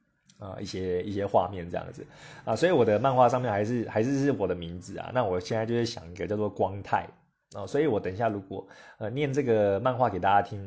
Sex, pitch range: male, 95-125 Hz